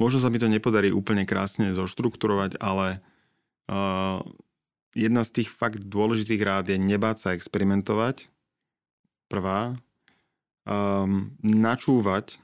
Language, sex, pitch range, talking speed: Slovak, male, 95-110 Hz, 110 wpm